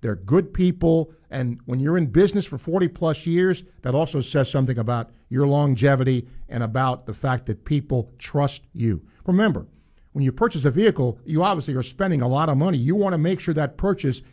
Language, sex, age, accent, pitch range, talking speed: English, male, 50-69, American, 125-165 Hz, 195 wpm